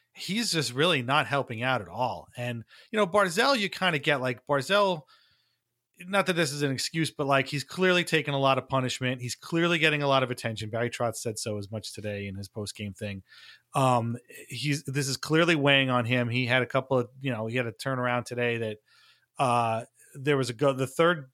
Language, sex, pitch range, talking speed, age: English, male, 120-150 Hz, 225 wpm, 30-49